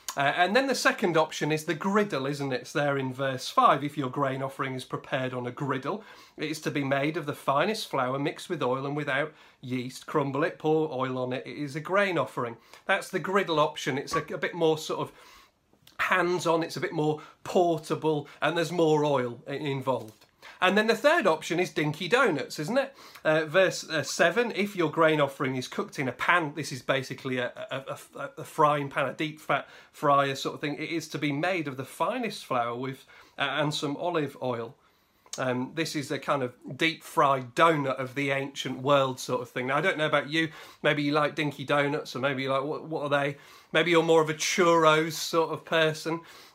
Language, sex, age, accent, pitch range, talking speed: English, male, 30-49, British, 140-165 Hz, 220 wpm